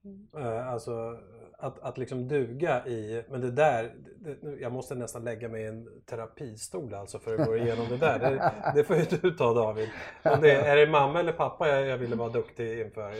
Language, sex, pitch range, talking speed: English, male, 120-160 Hz, 200 wpm